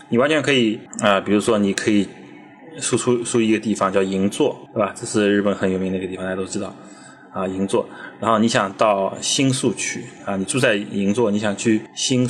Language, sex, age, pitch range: Chinese, male, 20-39, 100-130 Hz